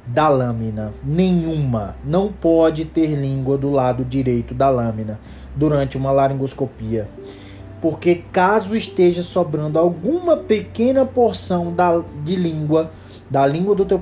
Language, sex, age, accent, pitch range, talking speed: Portuguese, male, 20-39, Brazilian, 125-165 Hz, 120 wpm